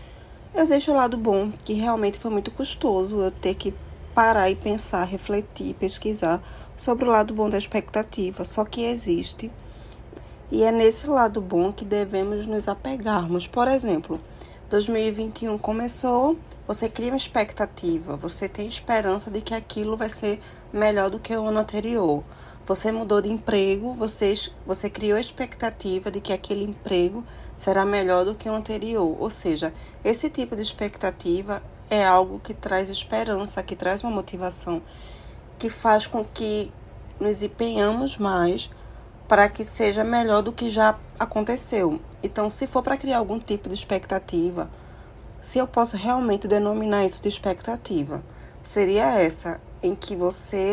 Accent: Brazilian